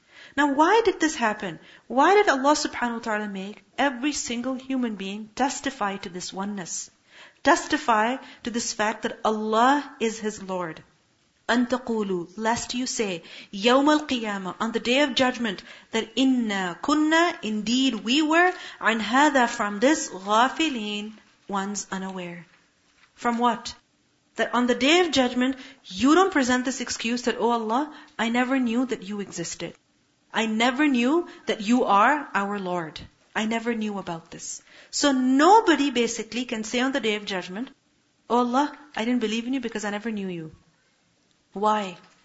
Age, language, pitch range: 40-59, English, 210-270 Hz